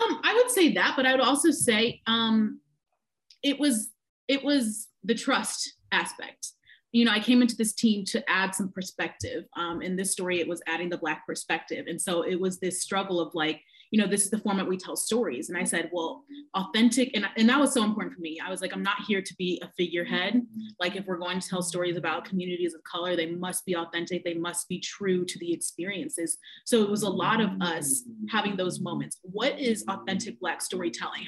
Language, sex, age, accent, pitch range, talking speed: English, female, 30-49, American, 180-245 Hz, 225 wpm